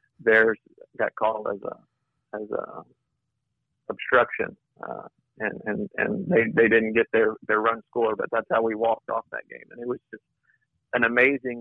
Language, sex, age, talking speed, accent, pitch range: English, male, 40-59, 175 wpm, American, 110-125 Hz